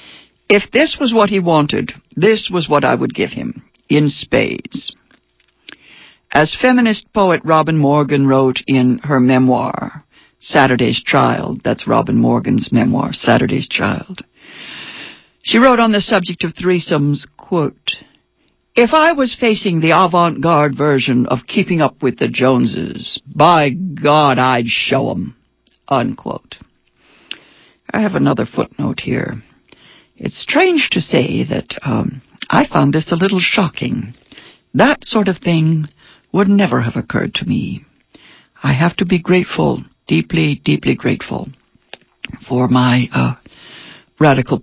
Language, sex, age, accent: English, female, 60-79, American